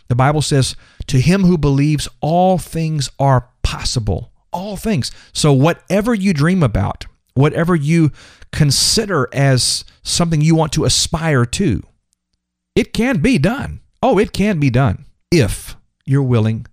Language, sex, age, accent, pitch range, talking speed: English, male, 40-59, American, 115-155 Hz, 145 wpm